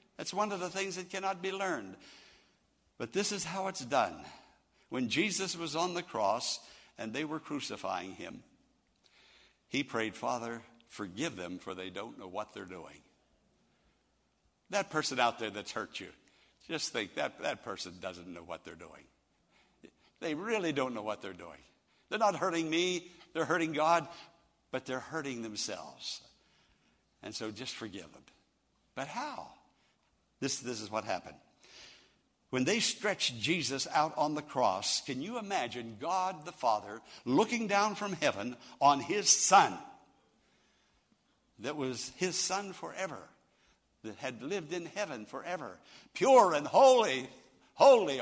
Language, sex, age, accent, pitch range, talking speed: English, male, 60-79, American, 125-190 Hz, 150 wpm